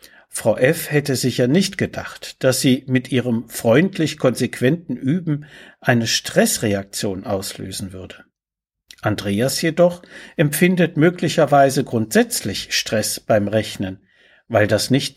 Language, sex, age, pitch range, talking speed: German, male, 60-79, 120-165 Hz, 110 wpm